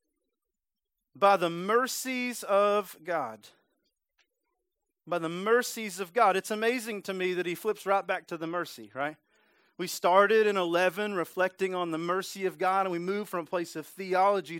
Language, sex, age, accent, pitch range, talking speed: English, male, 40-59, American, 165-220 Hz, 170 wpm